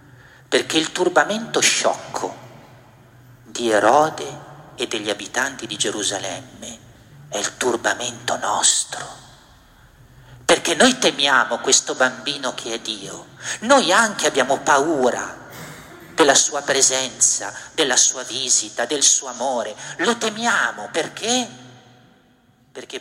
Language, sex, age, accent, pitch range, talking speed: Italian, male, 50-69, native, 120-165 Hz, 105 wpm